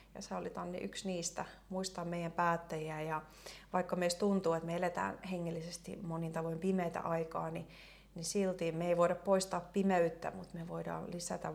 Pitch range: 165-190 Hz